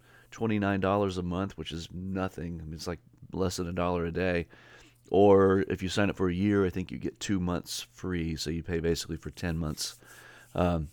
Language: English